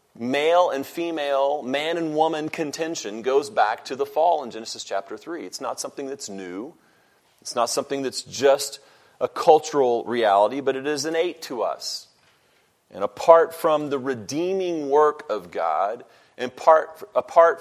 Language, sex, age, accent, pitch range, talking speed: English, male, 40-59, American, 125-160 Hz, 155 wpm